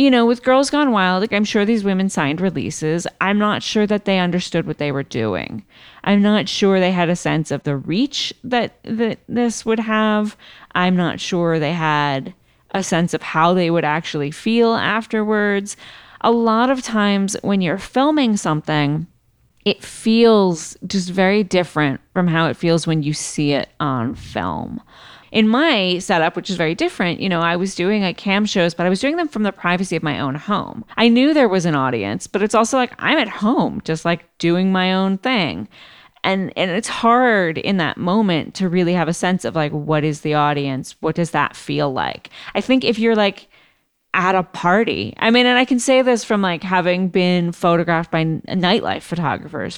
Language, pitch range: English, 160-215 Hz